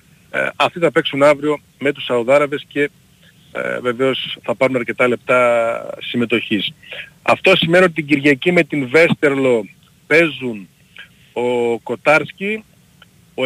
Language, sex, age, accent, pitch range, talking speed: Greek, male, 40-59, native, 120-160 Hz, 115 wpm